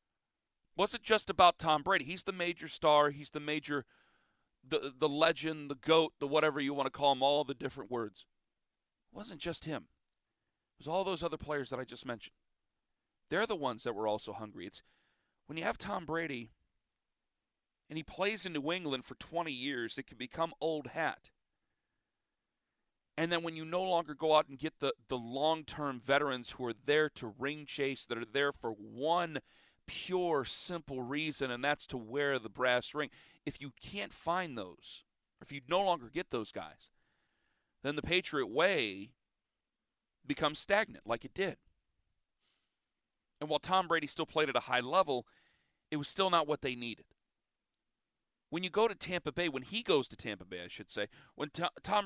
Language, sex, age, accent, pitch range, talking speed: English, male, 40-59, American, 130-165 Hz, 185 wpm